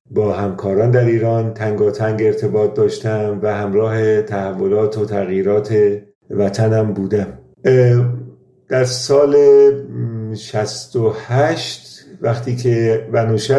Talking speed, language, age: 90 wpm, Persian, 50-69